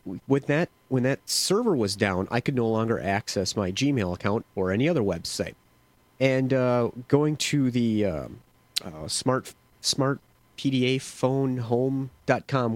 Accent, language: American, English